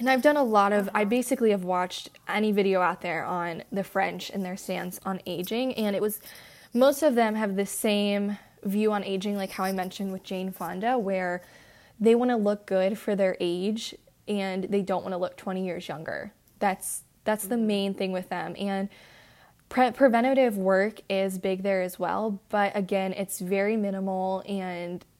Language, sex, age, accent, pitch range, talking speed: English, female, 10-29, American, 185-215 Hz, 190 wpm